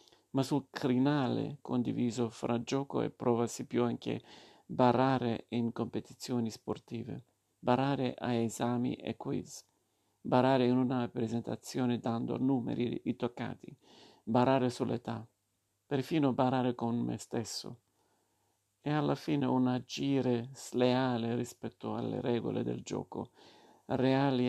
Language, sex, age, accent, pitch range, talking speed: Italian, male, 50-69, native, 115-130 Hz, 115 wpm